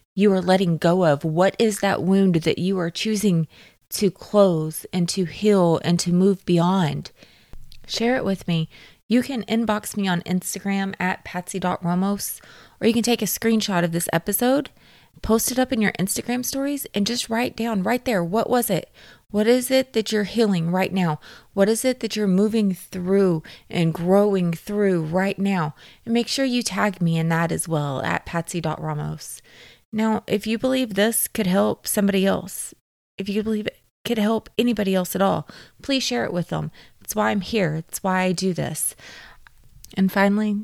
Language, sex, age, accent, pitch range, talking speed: English, female, 20-39, American, 180-215 Hz, 185 wpm